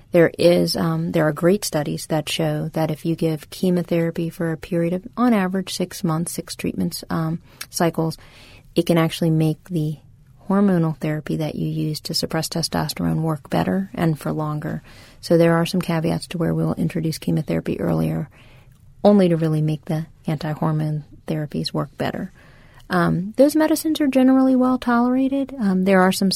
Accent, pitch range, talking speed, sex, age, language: American, 155-185 Hz, 170 wpm, female, 30-49, English